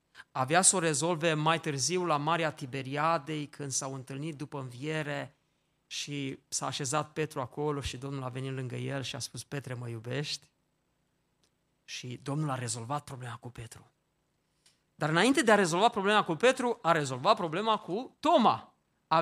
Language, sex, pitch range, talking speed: Romanian, male, 155-220 Hz, 160 wpm